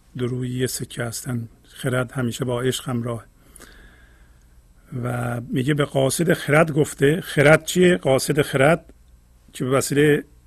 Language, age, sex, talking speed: Persian, 50-69, male, 120 wpm